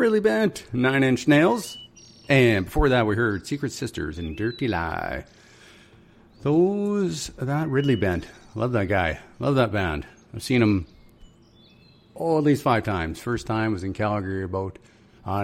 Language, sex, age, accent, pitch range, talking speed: English, male, 50-69, American, 95-135 Hz, 155 wpm